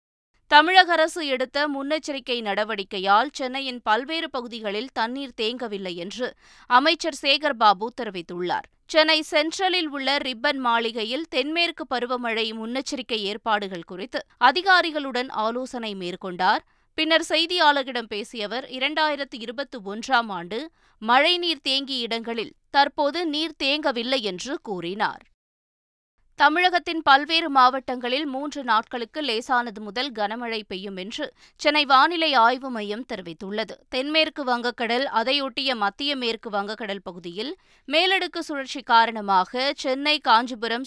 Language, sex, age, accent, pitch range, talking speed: Tamil, female, 20-39, native, 220-285 Hz, 105 wpm